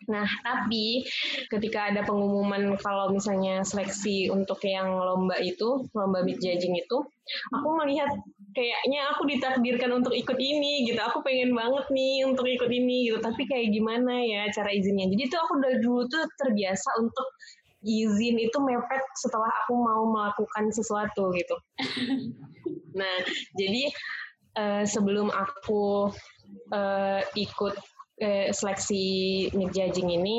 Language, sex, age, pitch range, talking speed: Indonesian, female, 20-39, 195-245 Hz, 130 wpm